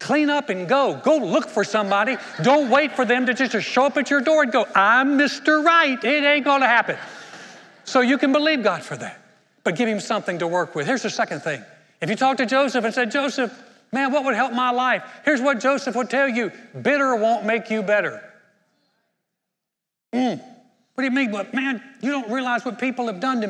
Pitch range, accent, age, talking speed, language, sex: 170-250 Hz, American, 60-79, 220 wpm, English, male